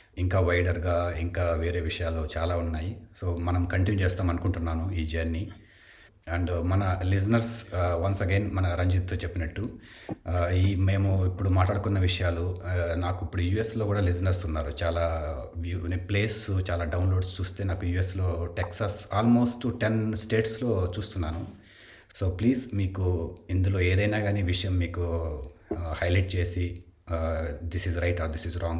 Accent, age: native, 30-49